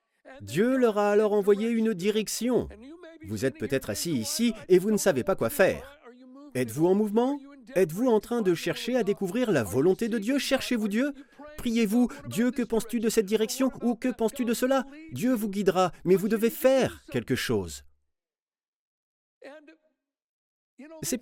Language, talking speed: French, 160 wpm